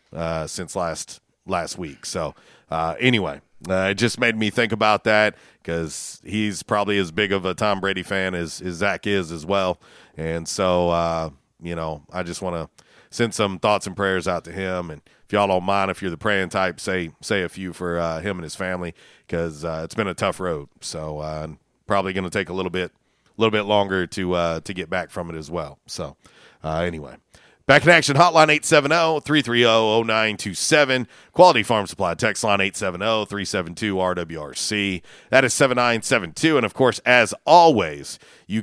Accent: American